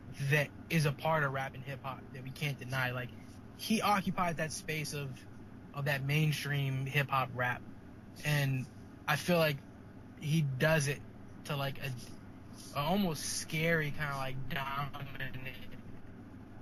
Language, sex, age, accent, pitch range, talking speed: English, male, 20-39, American, 120-155 Hz, 145 wpm